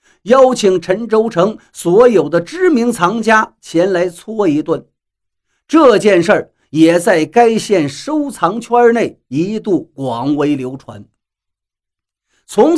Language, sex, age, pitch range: Chinese, male, 50-69, 160-240 Hz